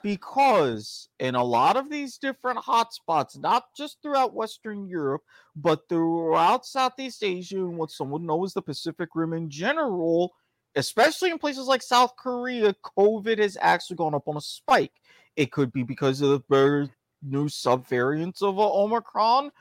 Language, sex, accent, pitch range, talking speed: English, male, American, 150-240 Hz, 160 wpm